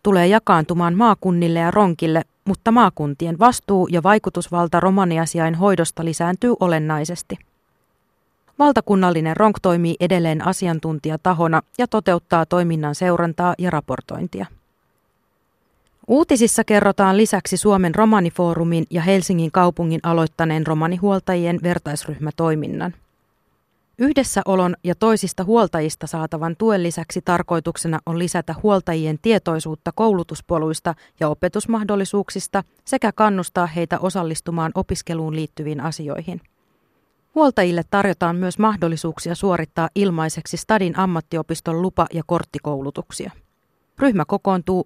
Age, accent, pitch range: 30-49, native, 165-195 Hz